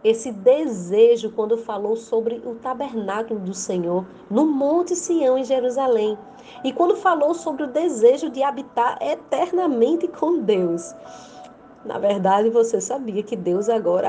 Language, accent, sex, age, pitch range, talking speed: Portuguese, Brazilian, female, 30-49, 215-280 Hz, 135 wpm